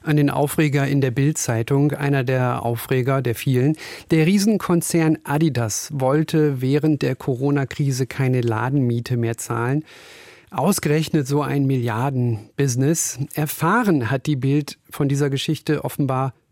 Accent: German